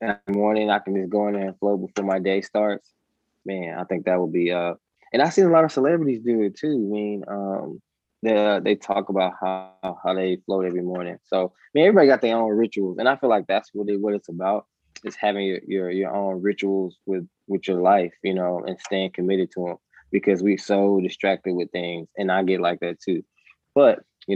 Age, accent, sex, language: 20-39, American, male, English